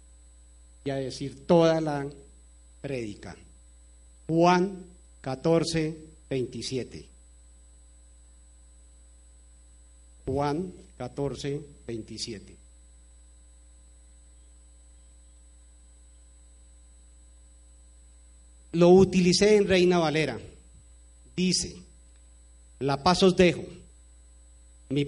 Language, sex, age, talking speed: Spanish, male, 50-69, 55 wpm